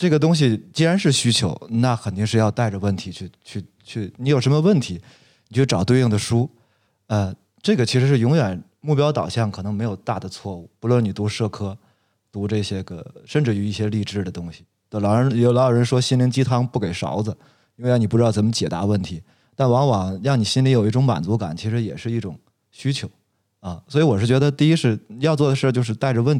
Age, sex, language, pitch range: 20-39, male, Chinese, 105-140 Hz